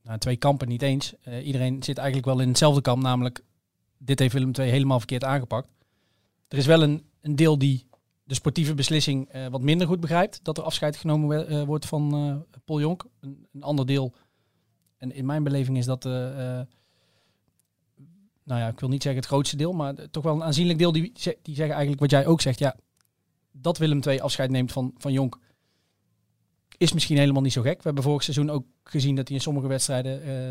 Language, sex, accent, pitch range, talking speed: Dutch, male, Dutch, 130-150 Hz, 215 wpm